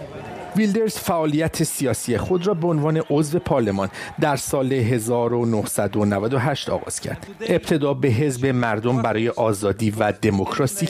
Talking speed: 120 wpm